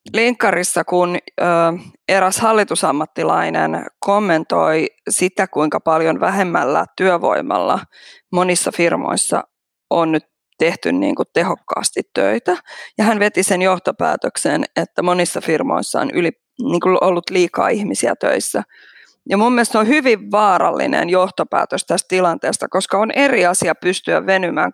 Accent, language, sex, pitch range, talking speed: native, Finnish, female, 175-215 Hz, 120 wpm